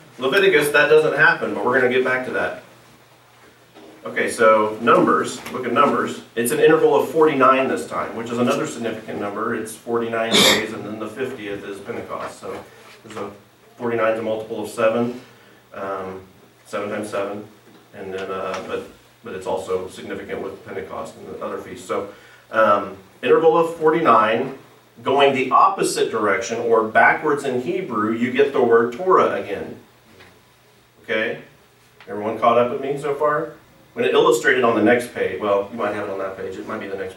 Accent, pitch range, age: American, 110-170 Hz, 40-59